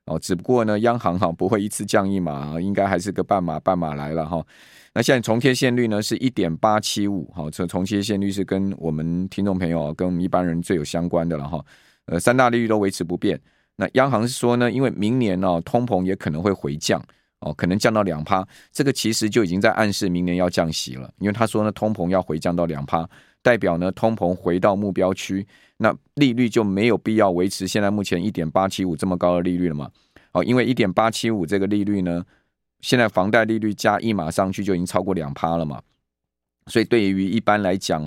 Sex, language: male, Chinese